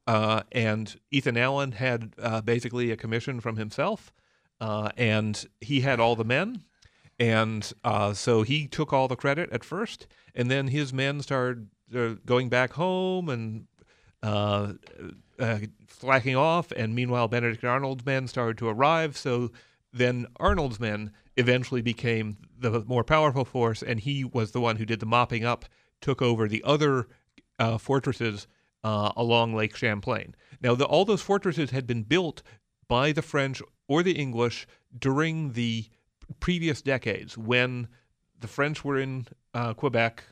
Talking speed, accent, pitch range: 155 wpm, American, 110-135 Hz